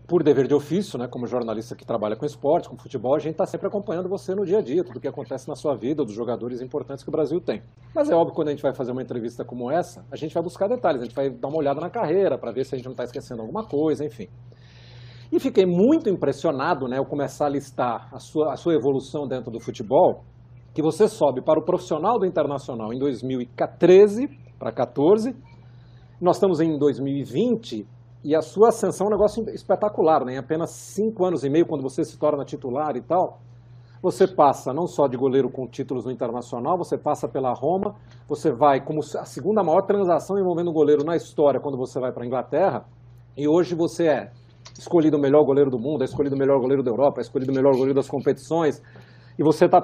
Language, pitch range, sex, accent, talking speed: Portuguese, 125-165 Hz, male, Brazilian, 225 wpm